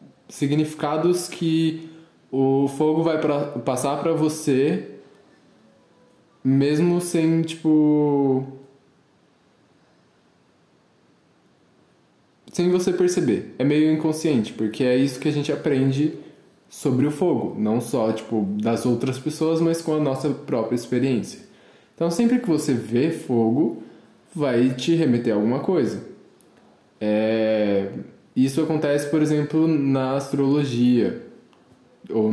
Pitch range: 115-155 Hz